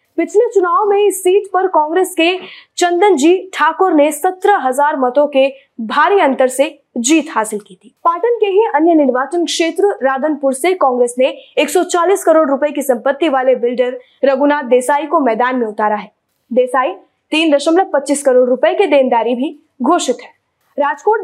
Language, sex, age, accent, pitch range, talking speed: Hindi, female, 20-39, native, 265-345 Hz, 160 wpm